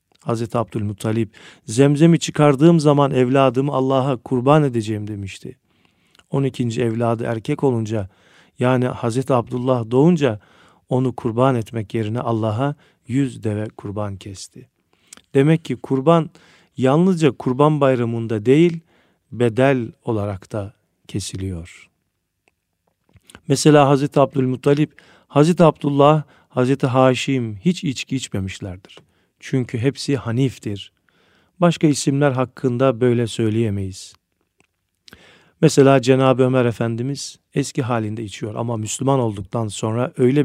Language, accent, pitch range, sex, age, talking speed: Turkish, native, 115-145 Hz, male, 40-59, 100 wpm